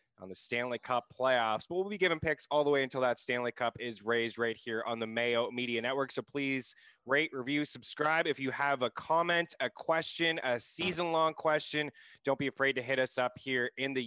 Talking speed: 220 wpm